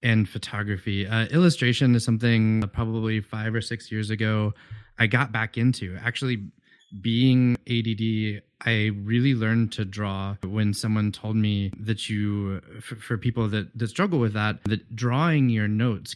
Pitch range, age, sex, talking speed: 105-120 Hz, 20-39, male, 155 wpm